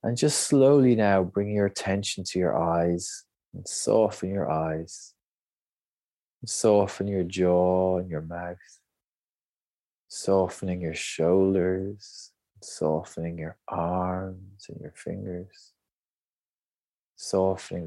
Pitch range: 85-100 Hz